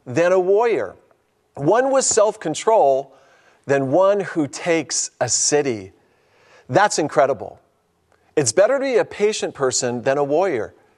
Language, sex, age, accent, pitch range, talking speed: English, male, 40-59, American, 145-200 Hz, 130 wpm